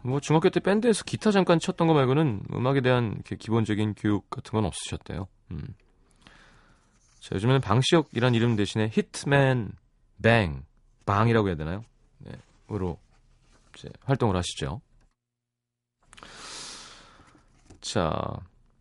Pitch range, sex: 100-140 Hz, male